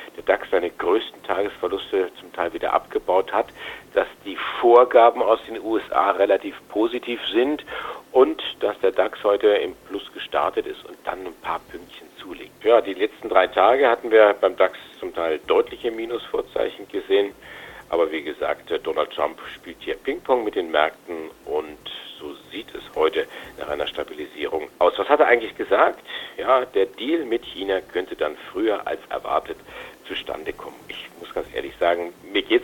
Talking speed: 170 wpm